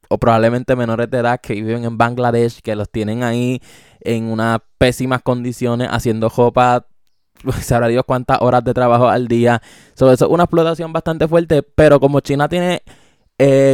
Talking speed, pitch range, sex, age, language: 170 wpm, 120-150 Hz, male, 20-39, Spanish